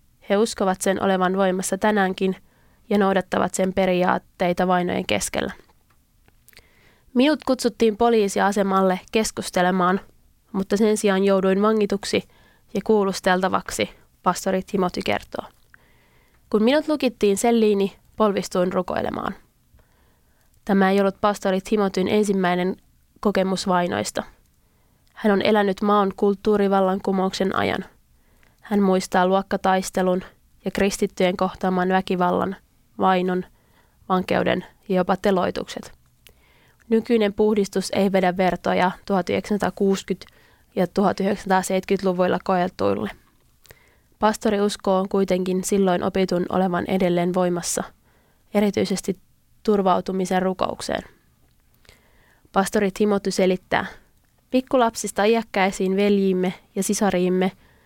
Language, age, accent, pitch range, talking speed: Finnish, 20-39, native, 185-210 Hz, 90 wpm